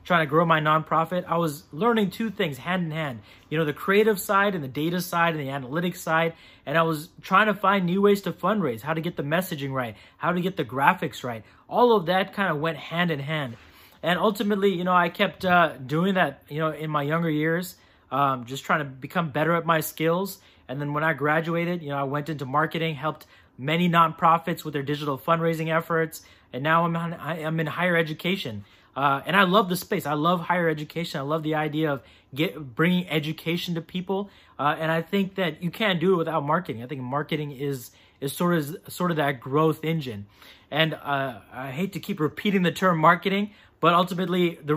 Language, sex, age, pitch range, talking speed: English, male, 20-39, 150-180 Hz, 220 wpm